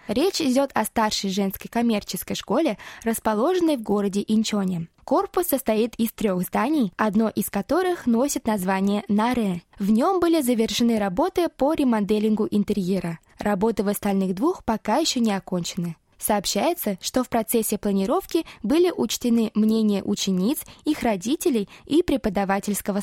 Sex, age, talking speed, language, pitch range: female, 20-39, 135 wpm, Russian, 205-275 Hz